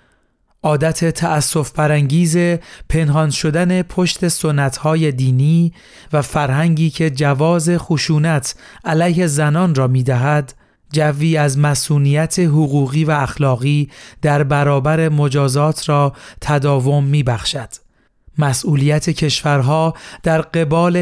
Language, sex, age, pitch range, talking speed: Persian, male, 40-59, 140-160 Hz, 95 wpm